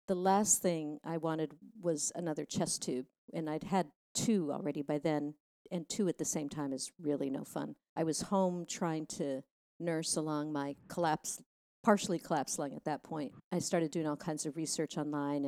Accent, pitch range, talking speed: American, 150-185 Hz, 190 wpm